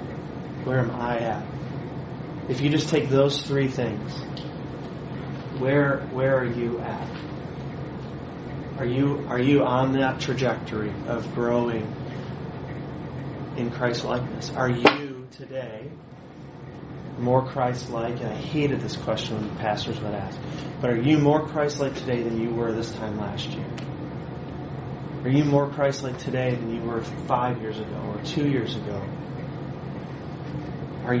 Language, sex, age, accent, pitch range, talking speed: English, male, 30-49, American, 120-145 Hz, 145 wpm